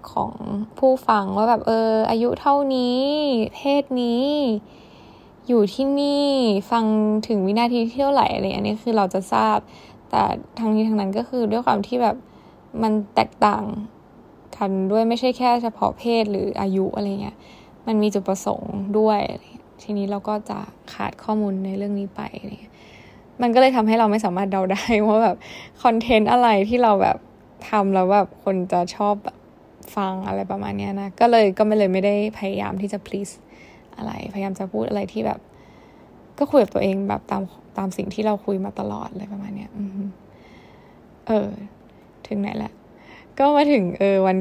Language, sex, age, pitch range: Thai, female, 10-29, 195-230 Hz